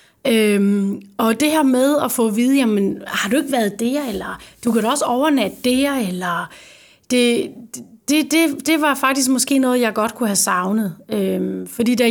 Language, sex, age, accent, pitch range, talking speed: Danish, female, 30-49, native, 220-265 Hz, 195 wpm